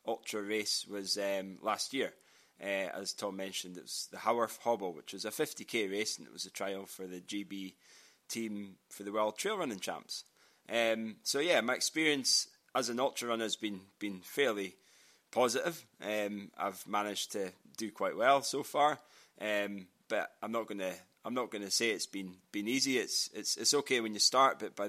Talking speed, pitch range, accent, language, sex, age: 200 wpm, 95-115 Hz, British, English, male, 20-39